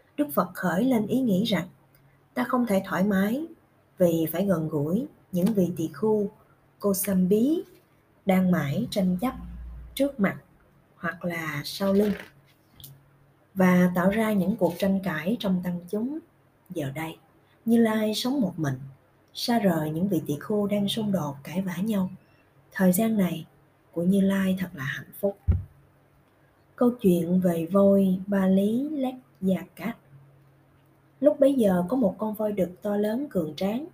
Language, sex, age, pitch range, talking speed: Vietnamese, female, 20-39, 160-220 Hz, 165 wpm